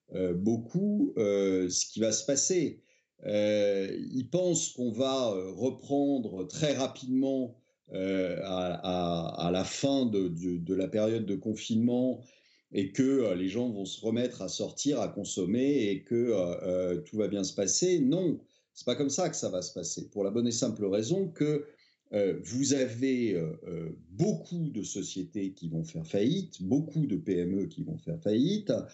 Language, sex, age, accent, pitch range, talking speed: French, male, 50-69, French, 95-140 Hz, 165 wpm